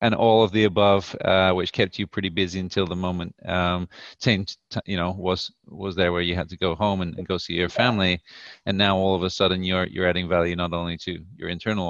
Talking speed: 250 wpm